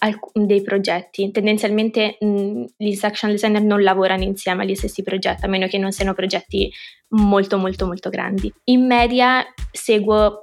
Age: 20-39